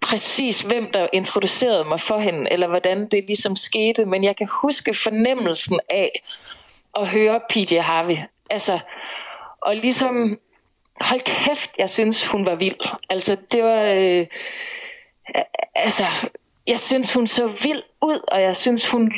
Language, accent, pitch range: Danish, native, 195-245 Hz